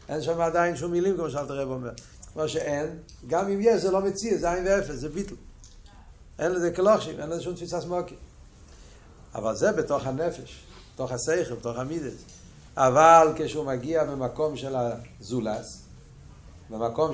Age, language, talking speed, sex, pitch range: 60-79, Hebrew, 160 wpm, male, 125-170 Hz